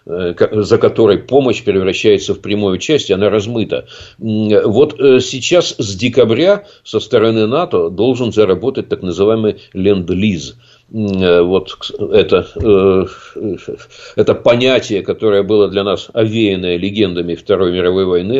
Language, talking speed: Russian, 115 wpm